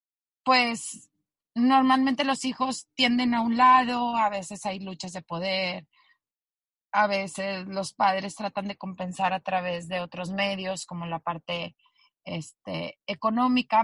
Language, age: Spanish, 30-49